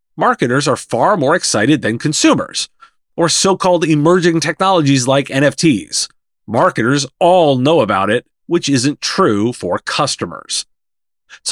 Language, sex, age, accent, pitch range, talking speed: English, male, 40-59, American, 125-175 Hz, 125 wpm